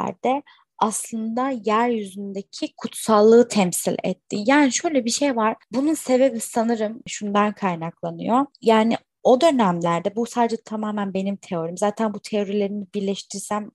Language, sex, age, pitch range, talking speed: Turkish, female, 20-39, 195-240 Hz, 120 wpm